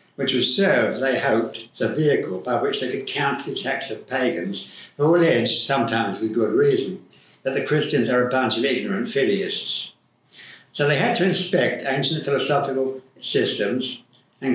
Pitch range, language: 120-150 Hz, English